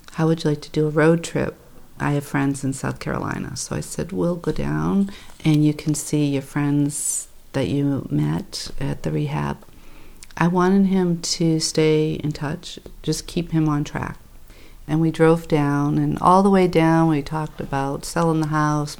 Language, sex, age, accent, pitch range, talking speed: English, female, 50-69, American, 140-165 Hz, 190 wpm